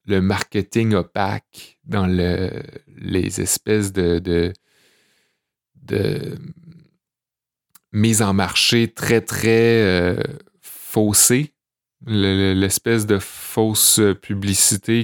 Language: French